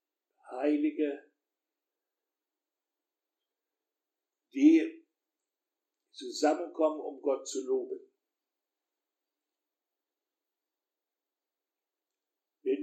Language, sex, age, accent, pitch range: German, male, 60-79, German, 315-400 Hz